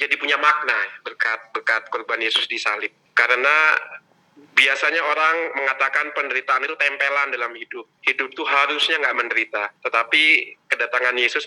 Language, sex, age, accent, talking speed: Indonesian, male, 30-49, native, 125 wpm